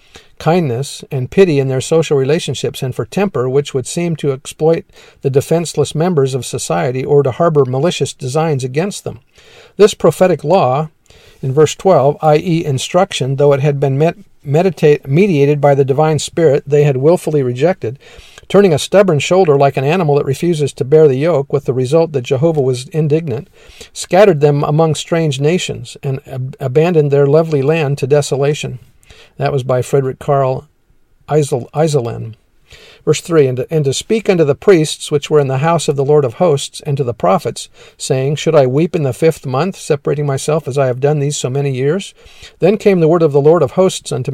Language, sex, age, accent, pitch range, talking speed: English, male, 50-69, American, 140-165 Hz, 185 wpm